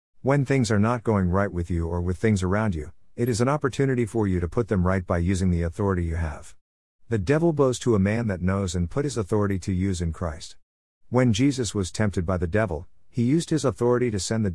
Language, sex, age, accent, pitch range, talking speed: English, male, 50-69, American, 90-115 Hz, 245 wpm